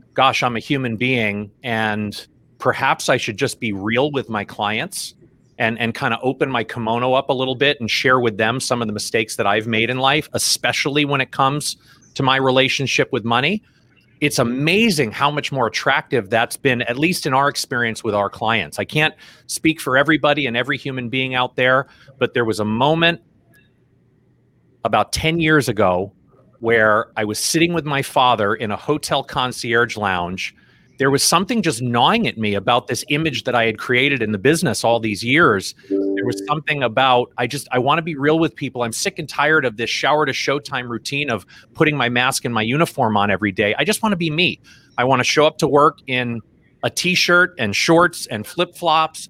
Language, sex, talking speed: English, male, 200 wpm